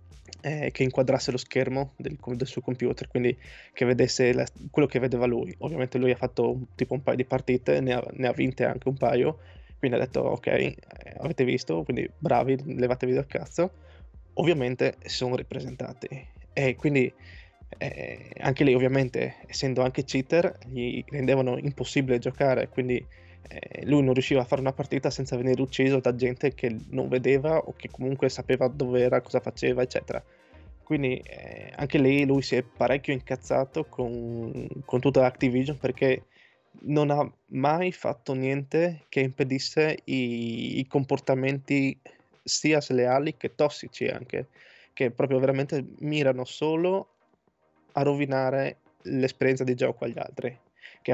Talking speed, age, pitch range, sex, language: 150 wpm, 20-39, 125-140 Hz, male, Italian